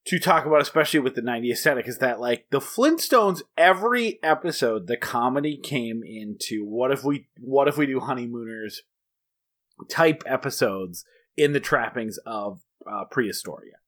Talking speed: 150 wpm